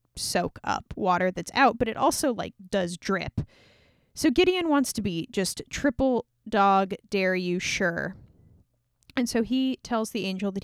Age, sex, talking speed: 10-29, female, 165 wpm